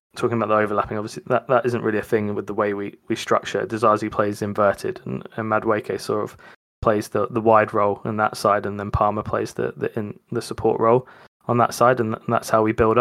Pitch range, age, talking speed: 105-120 Hz, 20-39, 235 wpm